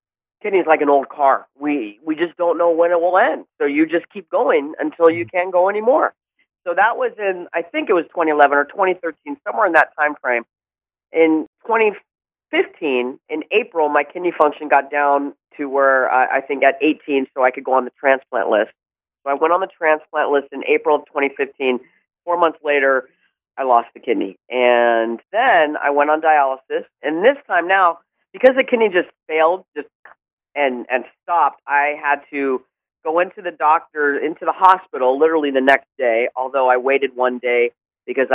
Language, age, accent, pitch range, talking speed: English, 40-59, American, 135-180 Hz, 190 wpm